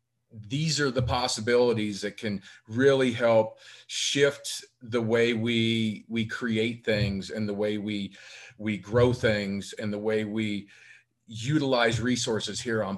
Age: 40-59